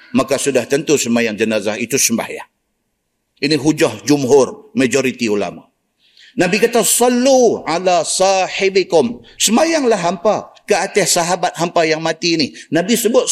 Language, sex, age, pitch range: Malay, male, 50-69, 125-195 Hz